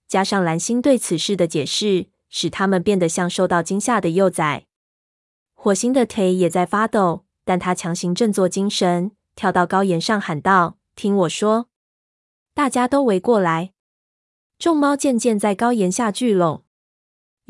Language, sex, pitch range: Chinese, female, 175-220 Hz